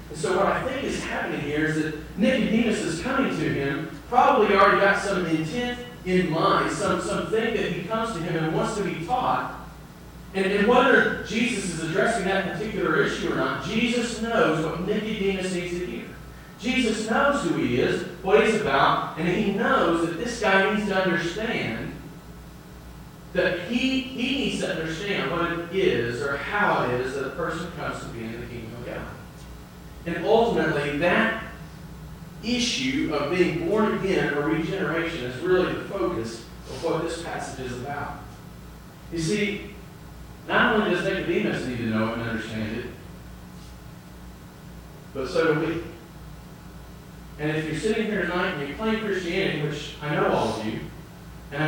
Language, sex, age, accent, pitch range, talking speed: English, male, 40-59, American, 150-205 Hz, 170 wpm